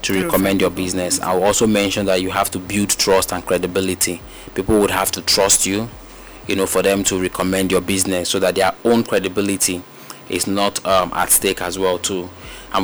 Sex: male